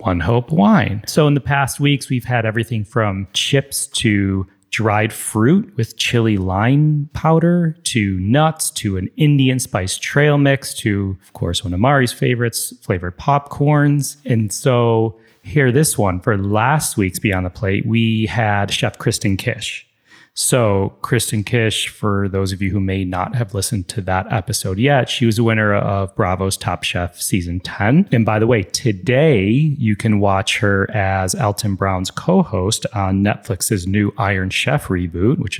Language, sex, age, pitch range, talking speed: English, male, 30-49, 95-125 Hz, 165 wpm